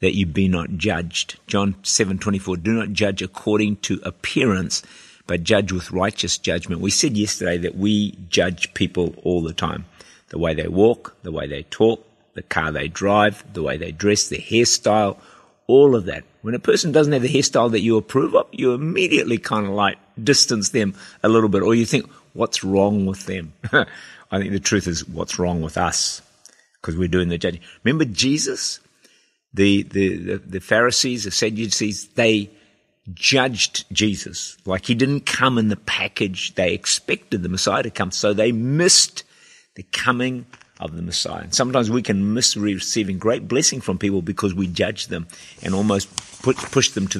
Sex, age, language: male, 50-69, English